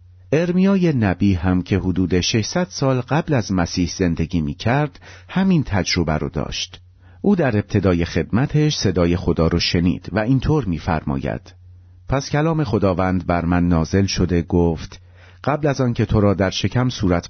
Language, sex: Persian, male